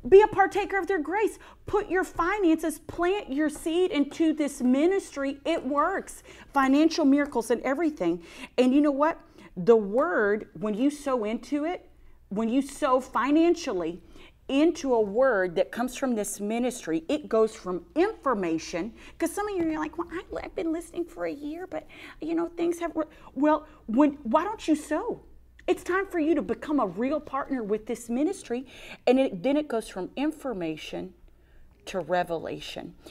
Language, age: English, 40-59